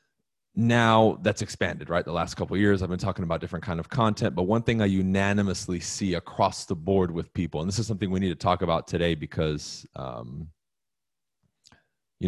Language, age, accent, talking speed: English, 20-39, American, 195 wpm